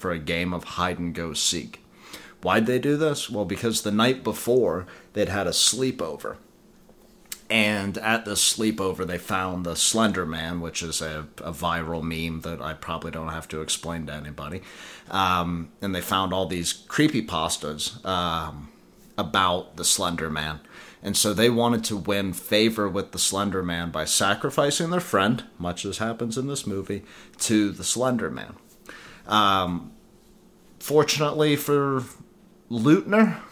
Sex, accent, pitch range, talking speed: male, American, 85-115 Hz, 145 wpm